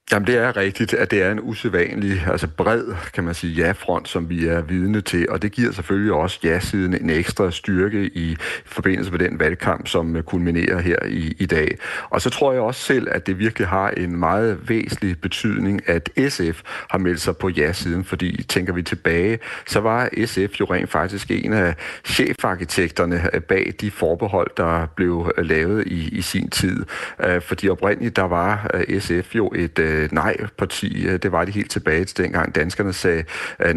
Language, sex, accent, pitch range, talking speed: Danish, male, native, 85-105 Hz, 180 wpm